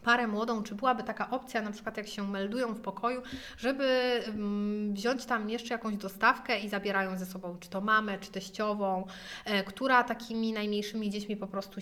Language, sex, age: Polish, female, 30-49